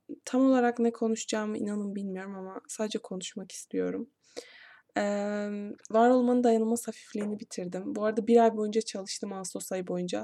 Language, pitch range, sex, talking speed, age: Turkish, 205-240 Hz, female, 145 wpm, 20-39